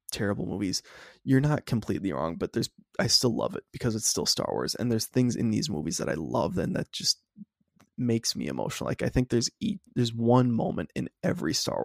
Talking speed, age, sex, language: 215 wpm, 20-39, male, English